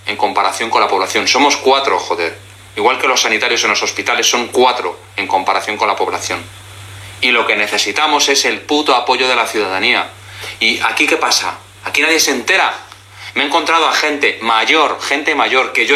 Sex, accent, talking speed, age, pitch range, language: male, Spanish, 190 wpm, 30-49, 100-145 Hz, Spanish